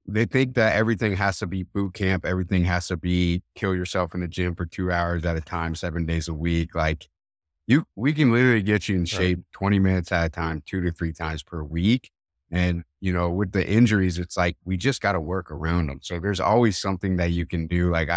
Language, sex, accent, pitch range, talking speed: English, male, American, 80-95 Hz, 240 wpm